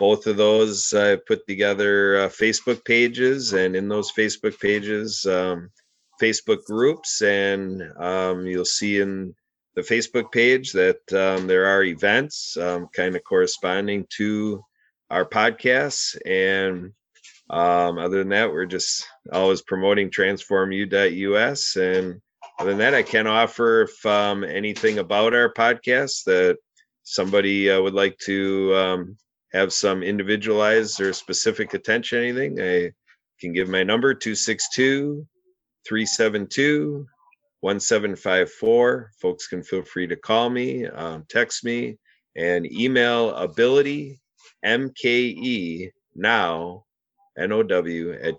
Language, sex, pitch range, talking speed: English, male, 95-120 Hz, 125 wpm